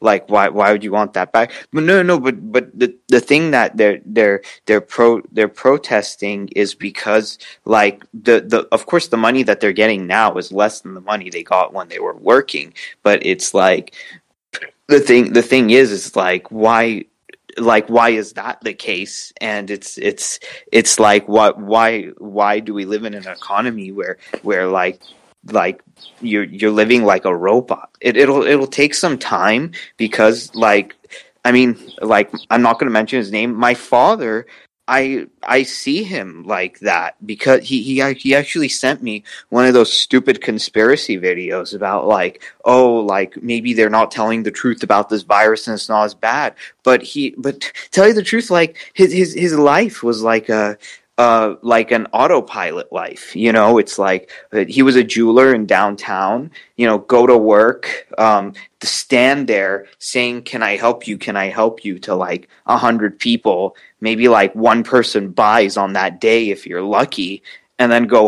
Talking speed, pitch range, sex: 185 wpm, 105-125 Hz, male